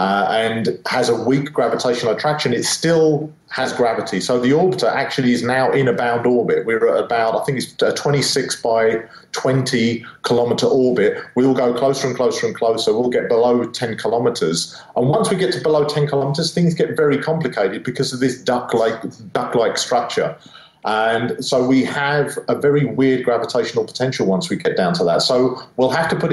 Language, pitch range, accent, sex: English, 125-145 Hz, British, male